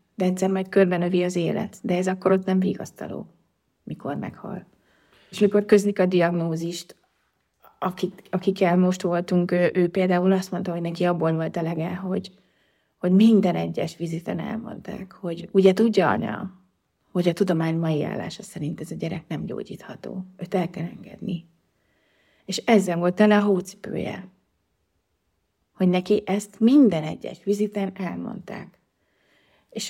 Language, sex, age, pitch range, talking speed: Hungarian, female, 30-49, 175-205 Hz, 145 wpm